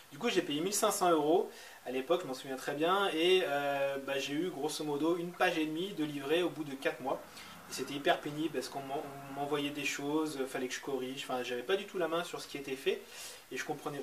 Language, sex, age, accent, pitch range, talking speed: French, male, 30-49, French, 135-175 Hz, 250 wpm